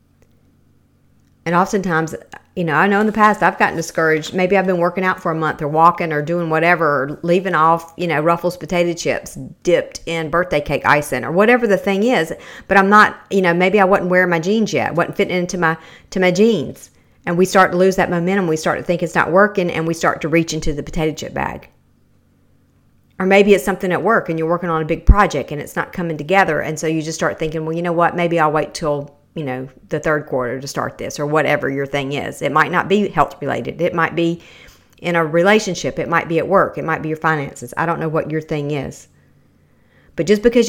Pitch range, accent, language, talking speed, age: 155-190 Hz, American, English, 240 wpm, 50-69